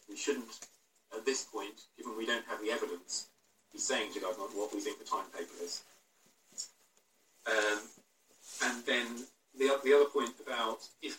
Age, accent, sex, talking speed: 40-59, British, male, 165 wpm